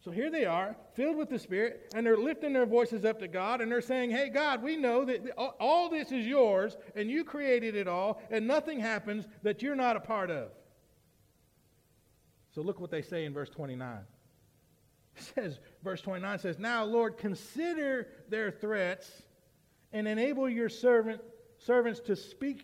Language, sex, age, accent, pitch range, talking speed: English, male, 50-69, American, 150-225 Hz, 180 wpm